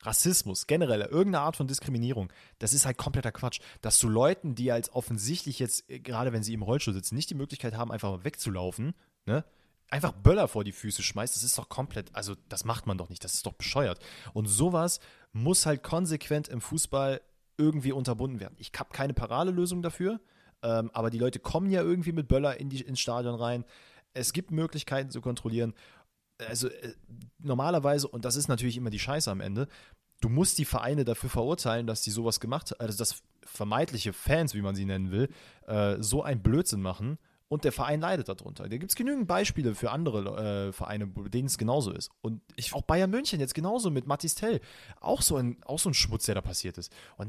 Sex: male